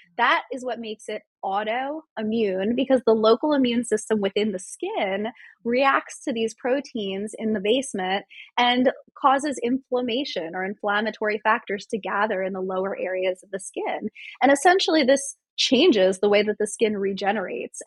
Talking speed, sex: 155 wpm, female